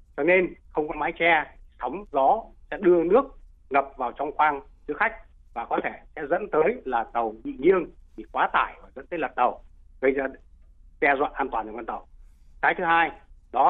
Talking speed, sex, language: 210 wpm, male, Vietnamese